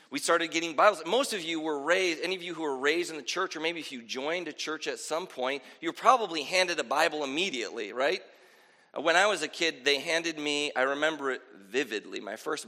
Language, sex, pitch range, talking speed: English, male, 160-230 Hz, 230 wpm